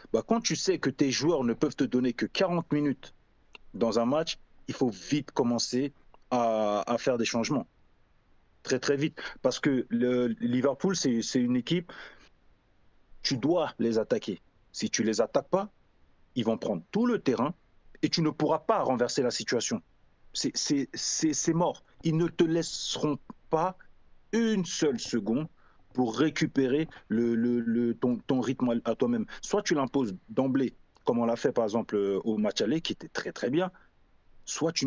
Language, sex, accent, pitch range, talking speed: French, male, French, 120-165 Hz, 180 wpm